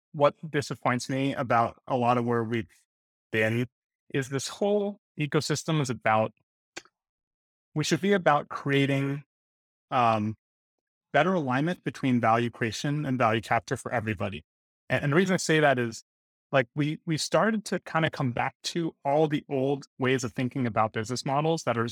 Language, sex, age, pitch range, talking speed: English, male, 30-49, 115-150 Hz, 165 wpm